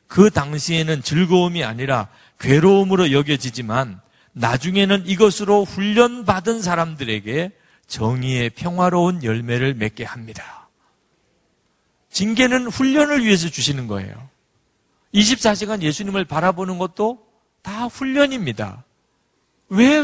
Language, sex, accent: Korean, male, native